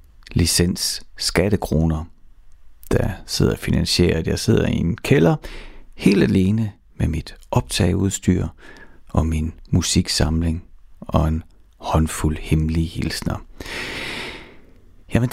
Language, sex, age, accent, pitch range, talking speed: Danish, male, 60-79, native, 80-110 Hz, 95 wpm